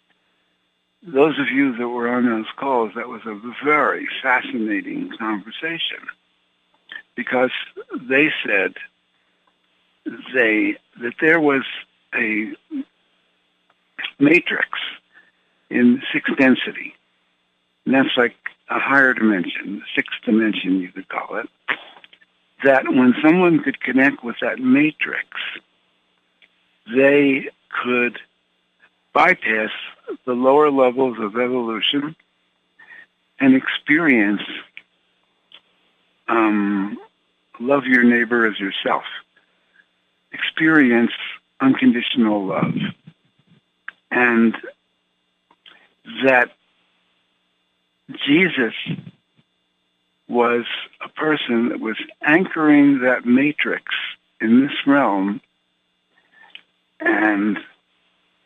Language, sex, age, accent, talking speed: English, male, 60-79, American, 80 wpm